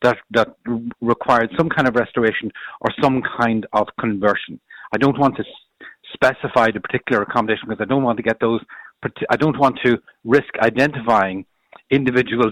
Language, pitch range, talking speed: English, 110-140 Hz, 165 wpm